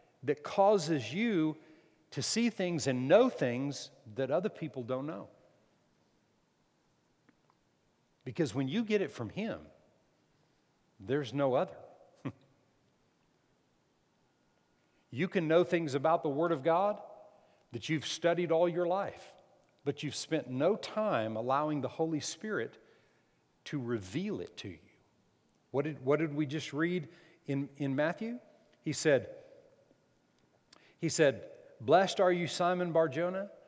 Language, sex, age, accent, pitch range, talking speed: English, male, 50-69, American, 130-175 Hz, 130 wpm